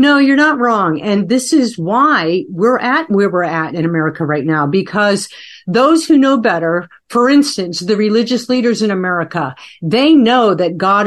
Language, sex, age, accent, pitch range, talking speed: English, female, 50-69, American, 185-235 Hz, 180 wpm